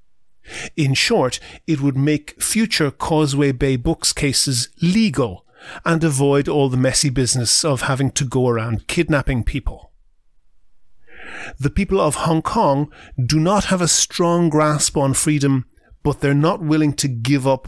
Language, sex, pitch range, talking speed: English, male, 130-155 Hz, 150 wpm